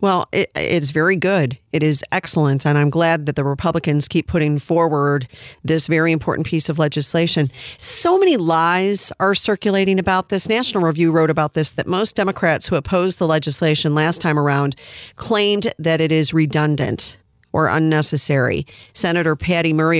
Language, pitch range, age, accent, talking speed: English, 150-195 Hz, 40-59, American, 160 wpm